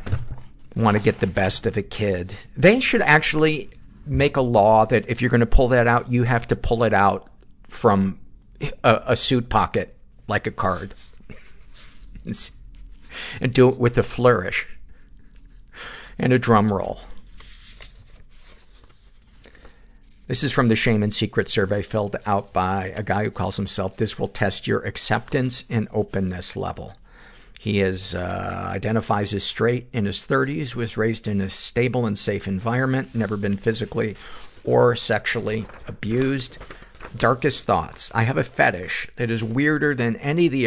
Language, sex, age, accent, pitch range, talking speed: English, male, 50-69, American, 100-125 Hz, 155 wpm